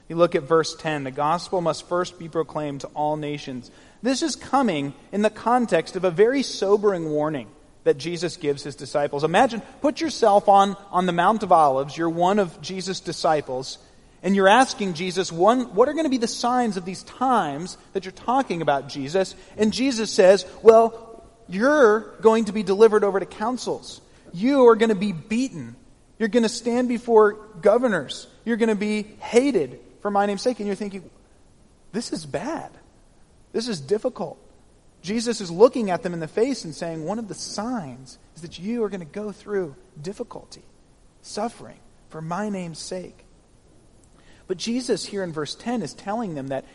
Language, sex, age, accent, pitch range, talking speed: English, male, 40-59, American, 165-225 Hz, 185 wpm